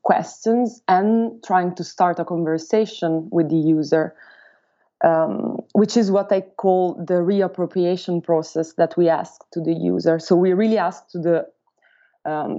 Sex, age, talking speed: female, 20-39, 150 wpm